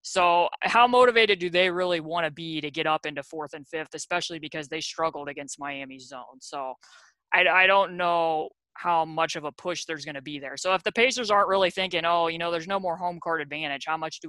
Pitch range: 150-180 Hz